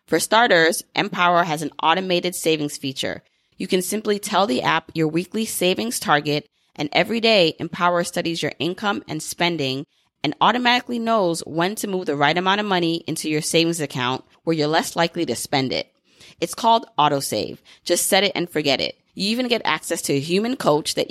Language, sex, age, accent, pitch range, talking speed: English, female, 30-49, American, 155-195 Hz, 190 wpm